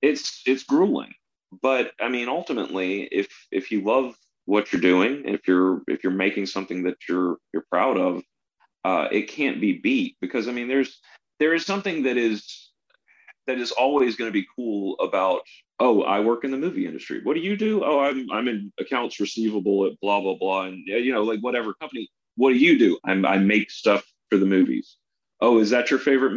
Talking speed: 205 wpm